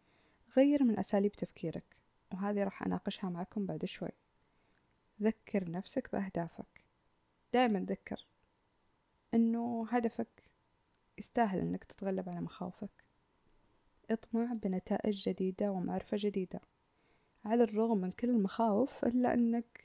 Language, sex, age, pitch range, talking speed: Arabic, female, 20-39, 195-230 Hz, 105 wpm